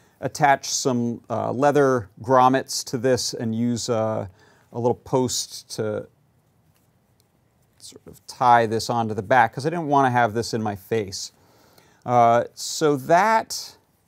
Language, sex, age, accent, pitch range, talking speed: English, male, 40-59, American, 110-135 Hz, 145 wpm